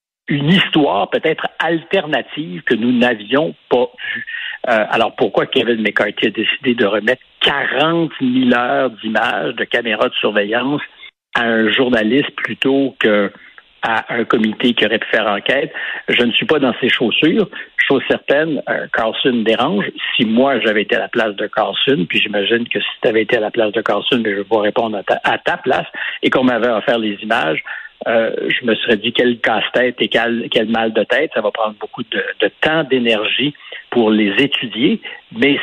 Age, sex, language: 60-79, male, French